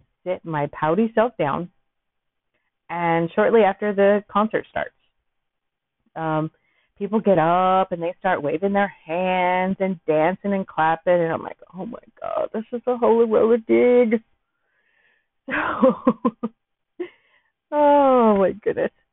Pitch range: 160-210 Hz